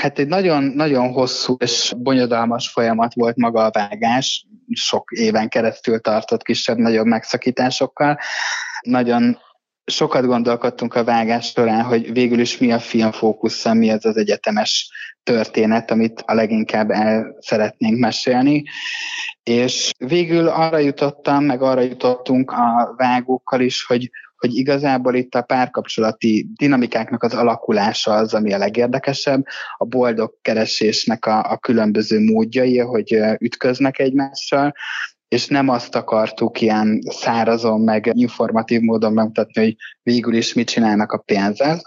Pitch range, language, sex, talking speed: 110-130 Hz, Hungarian, male, 130 wpm